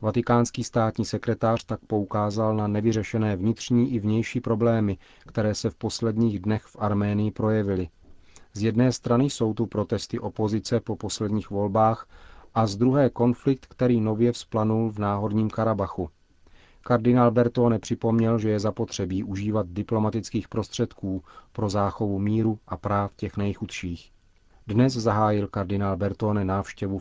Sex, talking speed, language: male, 135 wpm, Czech